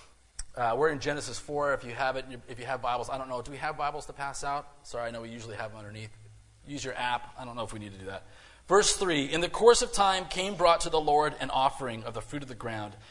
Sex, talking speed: male, 290 wpm